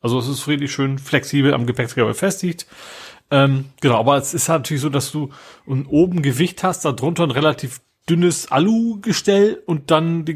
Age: 40-59